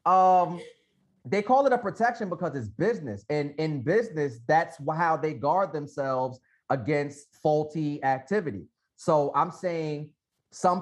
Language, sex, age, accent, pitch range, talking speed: English, male, 30-49, American, 125-150 Hz, 135 wpm